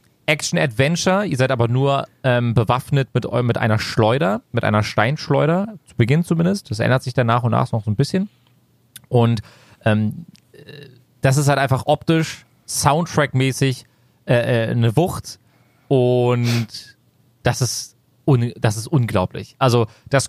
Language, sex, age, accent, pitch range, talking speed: German, male, 30-49, German, 120-155 Hz, 140 wpm